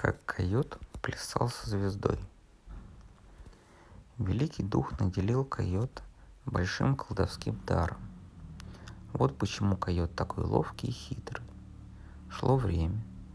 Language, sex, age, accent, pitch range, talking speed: Russian, male, 50-69, native, 90-110 Hz, 95 wpm